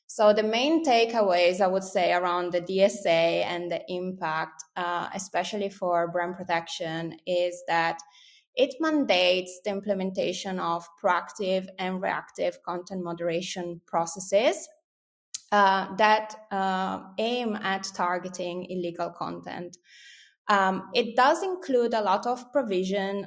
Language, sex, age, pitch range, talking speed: English, female, 20-39, 180-210 Hz, 120 wpm